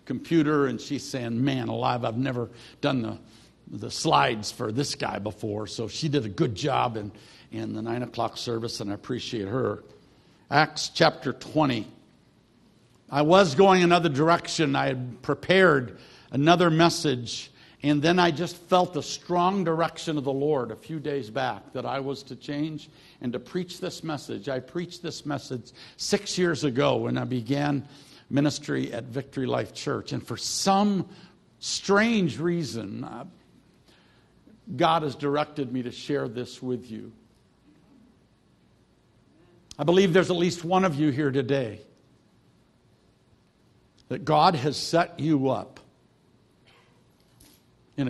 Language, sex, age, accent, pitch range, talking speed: English, male, 60-79, American, 120-165 Hz, 150 wpm